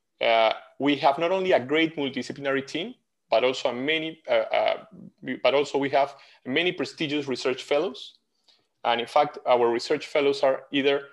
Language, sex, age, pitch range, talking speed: English, male, 30-49, 140-225 Hz, 160 wpm